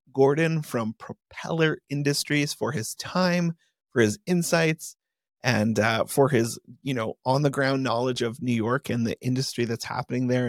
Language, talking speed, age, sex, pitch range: English, 165 wpm, 30-49, male, 125-150 Hz